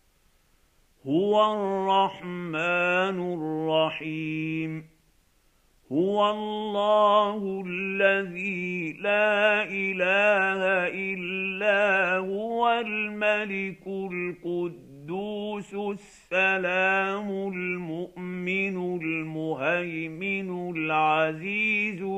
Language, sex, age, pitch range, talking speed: Arabic, male, 50-69, 175-195 Hz, 45 wpm